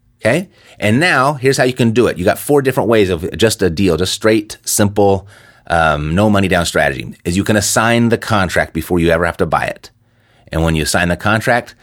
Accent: American